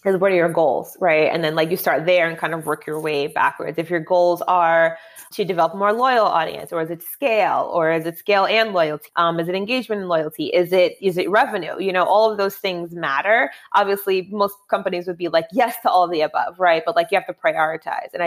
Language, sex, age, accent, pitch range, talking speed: English, female, 20-39, American, 165-195 Hz, 255 wpm